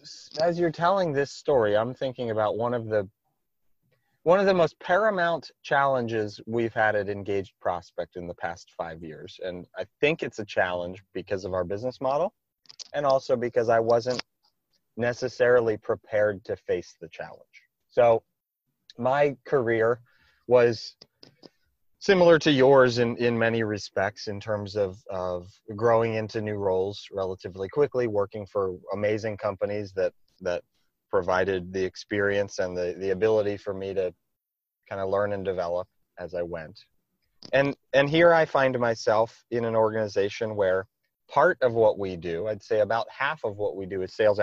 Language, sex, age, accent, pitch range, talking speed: English, male, 30-49, American, 100-130 Hz, 160 wpm